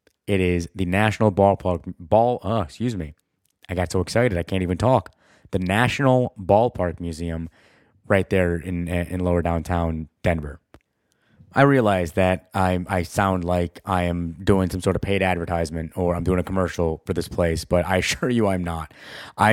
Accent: American